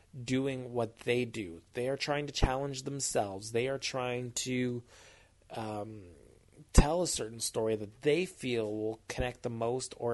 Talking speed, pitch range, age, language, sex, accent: 160 wpm, 110-135 Hz, 20-39, English, male, American